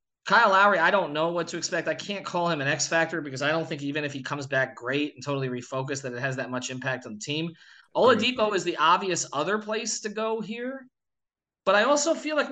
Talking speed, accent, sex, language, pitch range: 240 wpm, American, male, English, 140-170 Hz